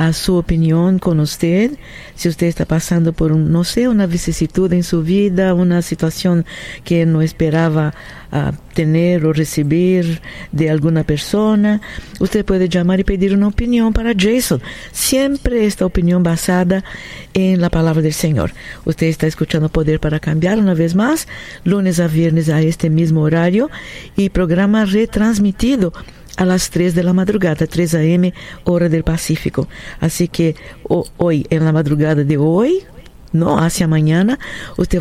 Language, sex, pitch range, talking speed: Spanish, female, 165-205 Hz, 155 wpm